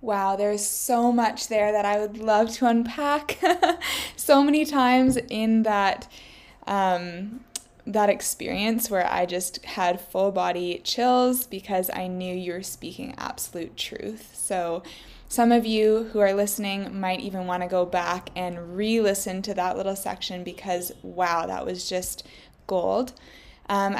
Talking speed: 150 wpm